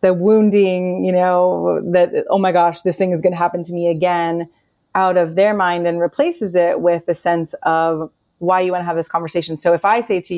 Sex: female